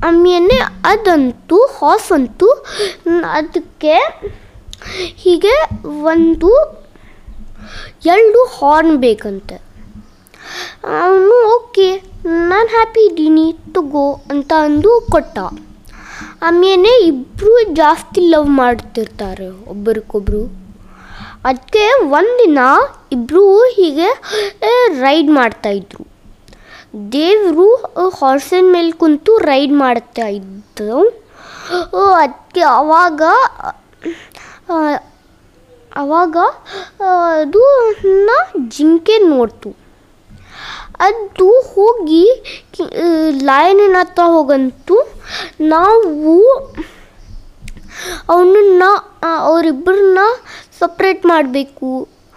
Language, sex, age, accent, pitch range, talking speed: Kannada, female, 20-39, native, 290-400 Hz, 60 wpm